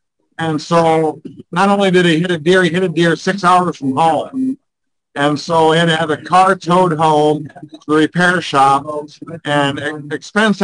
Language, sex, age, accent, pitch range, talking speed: English, male, 50-69, American, 155-190 Hz, 180 wpm